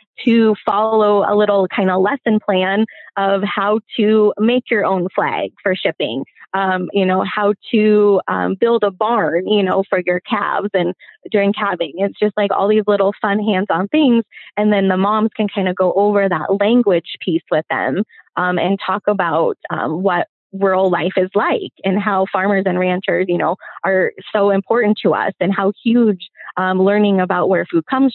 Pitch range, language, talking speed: 190-220 Hz, English, 190 wpm